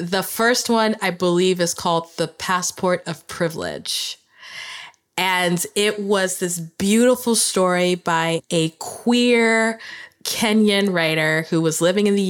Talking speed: 130 wpm